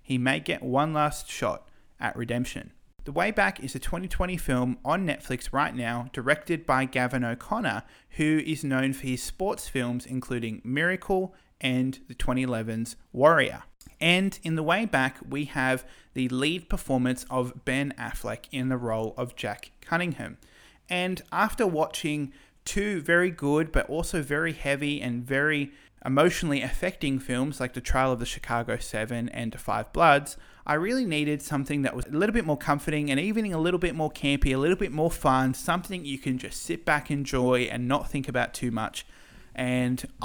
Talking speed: 175 wpm